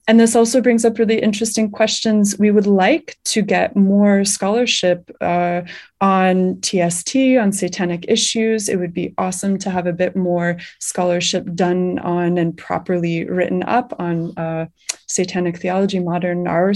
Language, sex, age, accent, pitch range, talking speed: English, female, 20-39, American, 180-210 Hz, 150 wpm